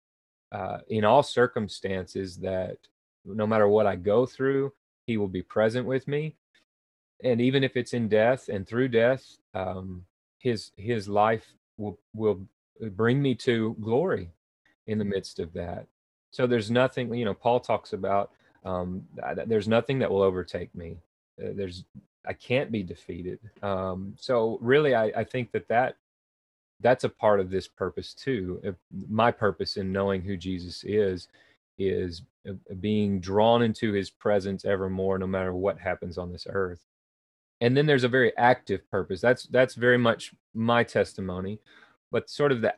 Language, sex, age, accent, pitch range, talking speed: English, male, 30-49, American, 95-120 Hz, 165 wpm